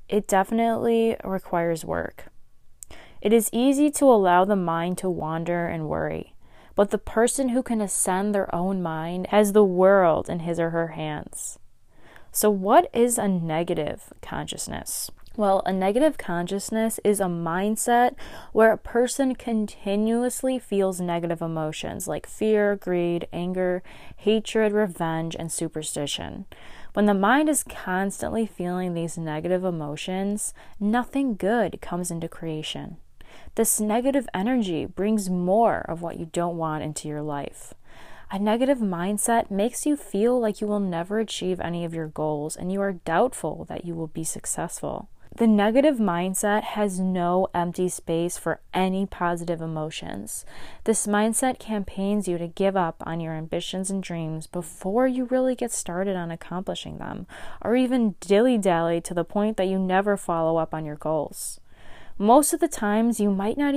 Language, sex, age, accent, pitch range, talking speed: English, female, 20-39, American, 170-220 Hz, 155 wpm